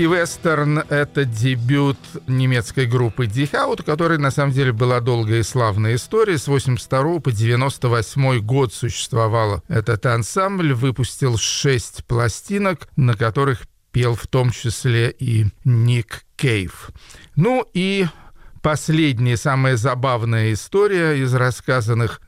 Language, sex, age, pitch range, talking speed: Russian, male, 40-59, 120-150 Hz, 120 wpm